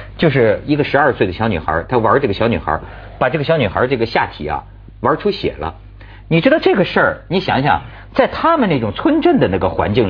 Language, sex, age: Chinese, male, 50-69